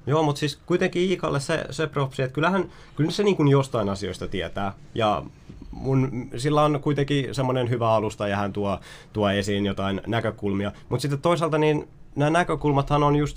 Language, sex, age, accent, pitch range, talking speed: Finnish, male, 20-39, native, 100-135 Hz, 175 wpm